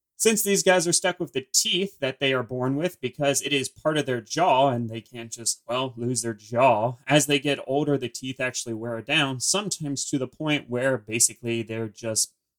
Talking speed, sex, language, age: 215 wpm, male, English, 30-49